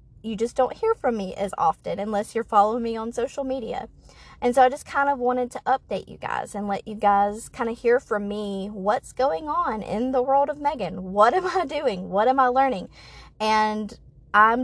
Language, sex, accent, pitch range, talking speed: English, female, American, 190-240 Hz, 215 wpm